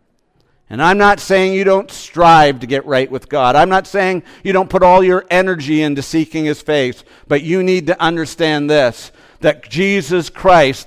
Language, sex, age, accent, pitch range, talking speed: English, male, 50-69, American, 140-190 Hz, 190 wpm